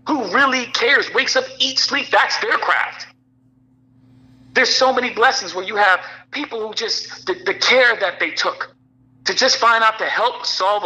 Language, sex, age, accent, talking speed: English, male, 40-59, American, 180 wpm